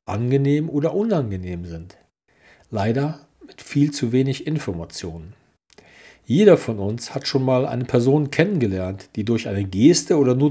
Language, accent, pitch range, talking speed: German, German, 110-155 Hz, 145 wpm